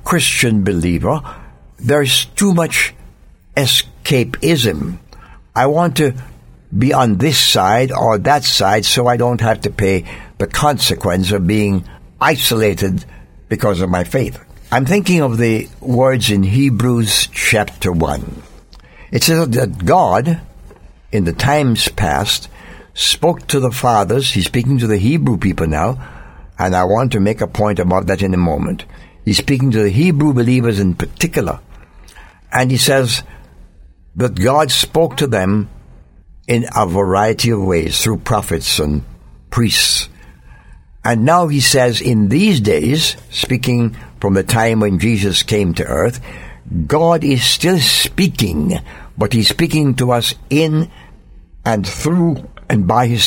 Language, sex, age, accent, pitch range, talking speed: English, male, 60-79, American, 90-130 Hz, 145 wpm